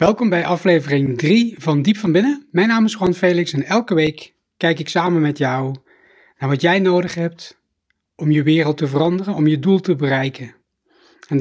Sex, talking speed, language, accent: male, 195 wpm, Dutch, Dutch